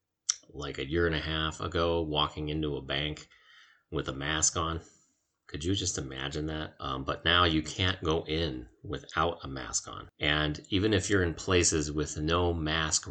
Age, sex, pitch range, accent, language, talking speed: 30-49, male, 75-85 Hz, American, English, 185 wpm